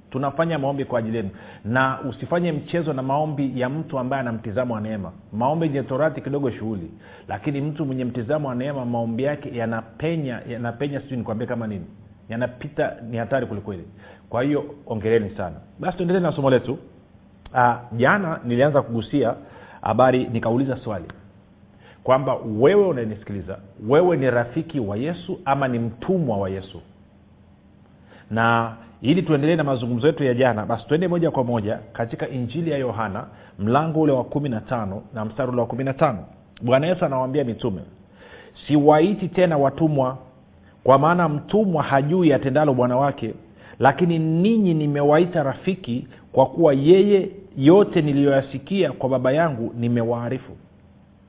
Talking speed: 140 wpm